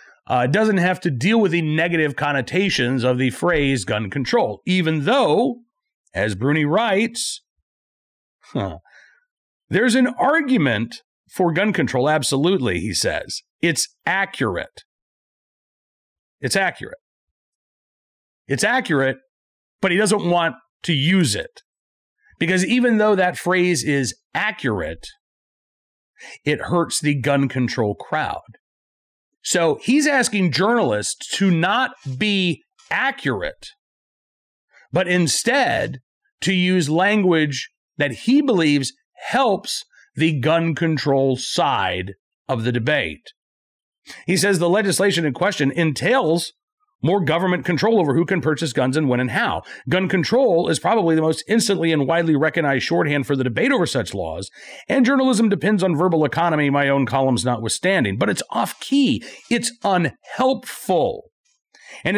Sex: male